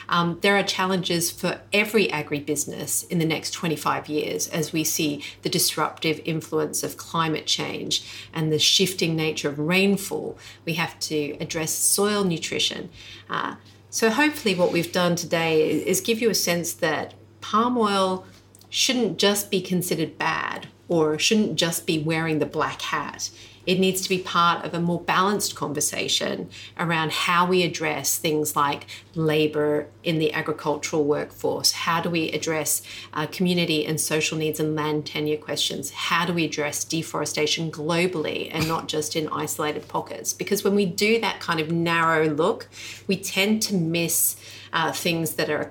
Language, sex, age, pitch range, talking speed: English, female, 40-59, 150-180 Hz, 165 wpm